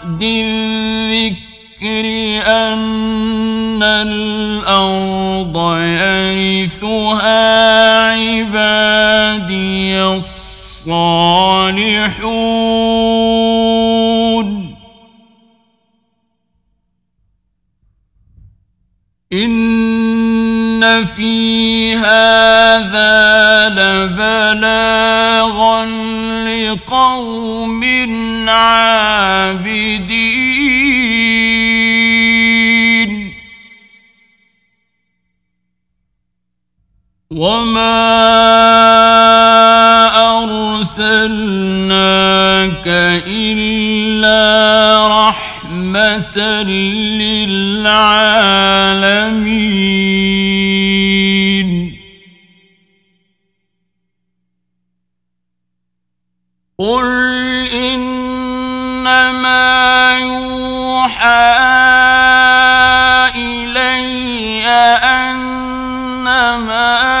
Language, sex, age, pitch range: Arabic, male, 50-69, 195-225 Hz